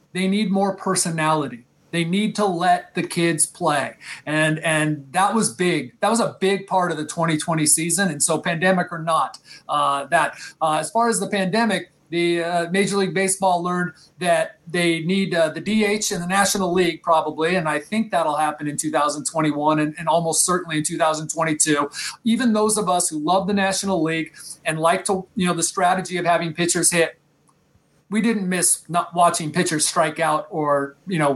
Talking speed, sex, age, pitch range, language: 190 wpm, male, 30-49, 160-195 Hz, English